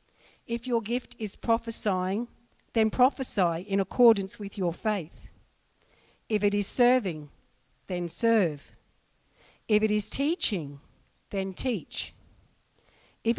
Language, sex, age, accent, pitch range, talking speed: English, female, 60-79, Australian, 175-225 Hz, 110 wpm